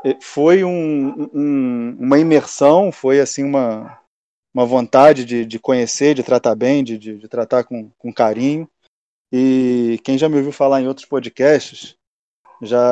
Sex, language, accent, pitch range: male, Portuguese, Brazilian, 120-140 Hz